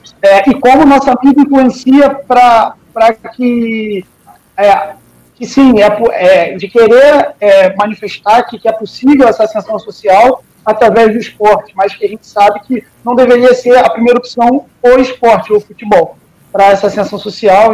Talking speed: 160 wpm